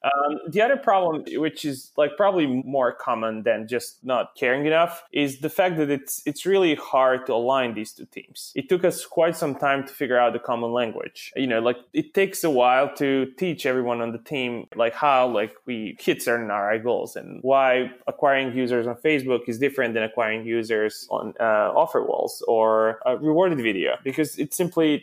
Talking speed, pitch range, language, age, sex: 200 wpm, 120-155 Hz, English, 20-39, male